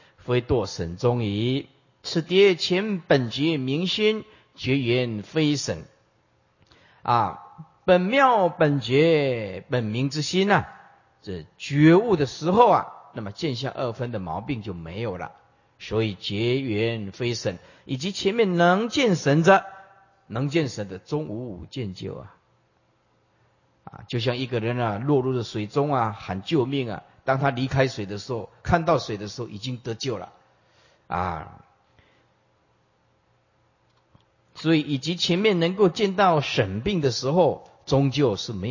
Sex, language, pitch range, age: male, Chinese, 110-165 Hz, 50-69